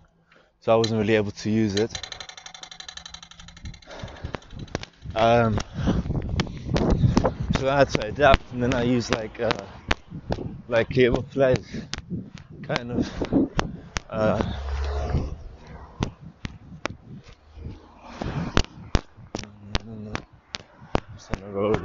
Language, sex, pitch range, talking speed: English, male, 105-135 Hz, 70 wpm